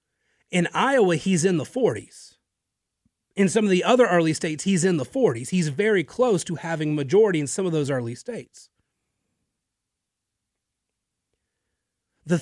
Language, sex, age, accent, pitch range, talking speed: English, male, 30-49, American, 130-200 Hz, 145 wpm